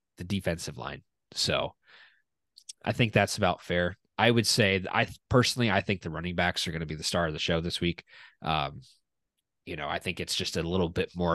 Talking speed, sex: 215 wpm, male